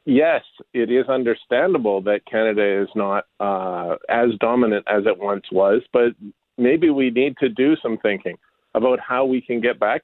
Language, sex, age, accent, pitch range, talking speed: English, male, 40-59, American, 110-135 Hz, 175 wpm